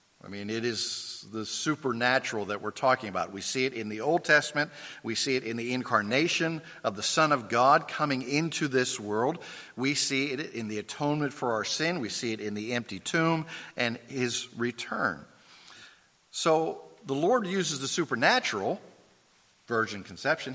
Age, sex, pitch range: 50-69, male, 110-150 Hz